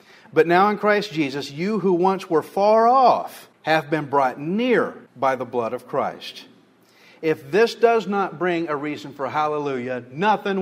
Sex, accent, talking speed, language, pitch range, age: male, American, 170 wpm, English, 145-195 Hz, 50-69